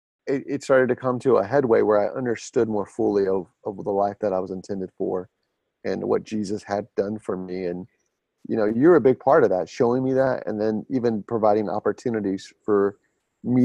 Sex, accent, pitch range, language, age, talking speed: male, American, 100-125 Hz, English, 30-49, 205 wpm